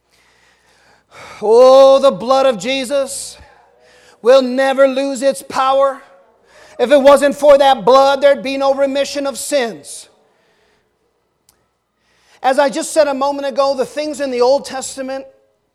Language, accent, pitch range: English, American, 245-285 Hz